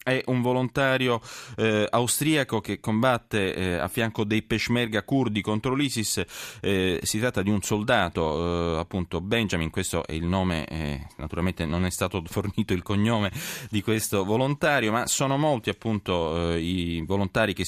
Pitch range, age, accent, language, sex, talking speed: 95-120 Hz, 30-49, native, Italian, male, 160 wpm